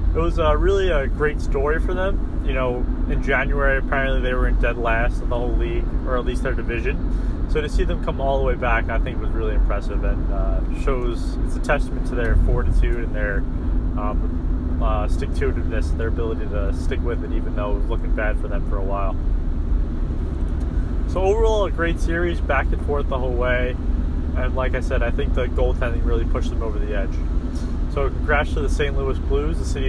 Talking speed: 215 wpm